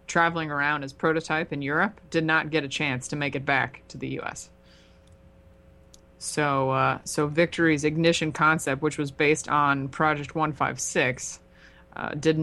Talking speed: 160 wpm